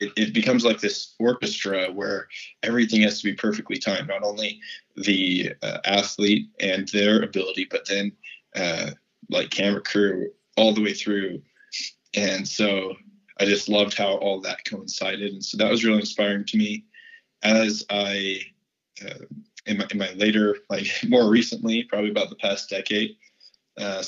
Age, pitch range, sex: 20-39, 95-110 Hz, male